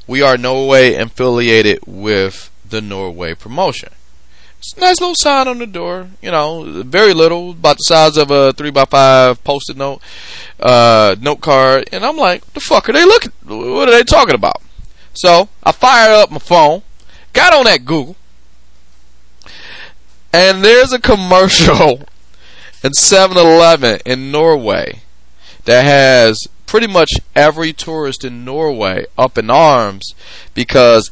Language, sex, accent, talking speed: English, male, American, 145 wpm